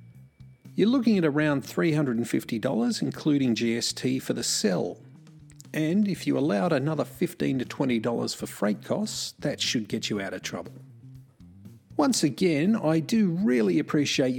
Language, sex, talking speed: English, male, 140 wpm